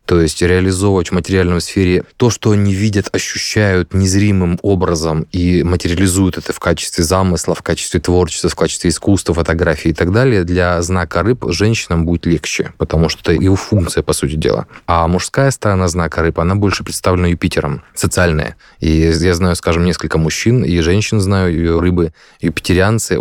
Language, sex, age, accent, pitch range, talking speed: Russian, male, 20-39, native, 85-100 Hz, 170 wpm